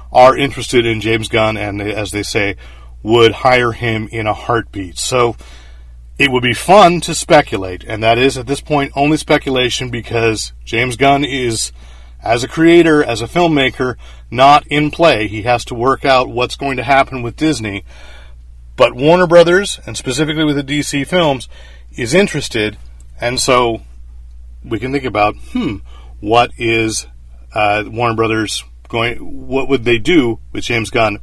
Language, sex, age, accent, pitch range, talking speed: English, male, 40-59, American, 105-145 Hz, 165 wpm